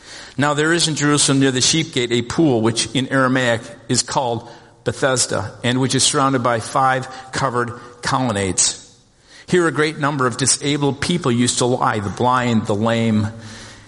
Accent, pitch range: American, 120-145 Hz